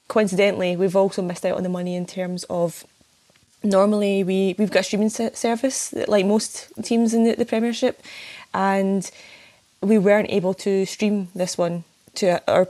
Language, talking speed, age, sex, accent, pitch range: English, 165 wpm, 20-39, female, British, 180-215 Hz